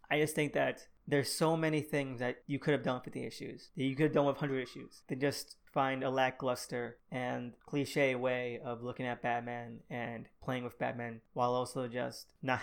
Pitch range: 125-145 Hz